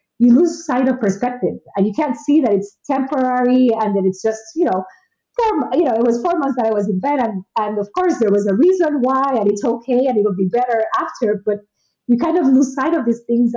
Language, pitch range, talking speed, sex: English, 200-250 Hz, 250 wpm, female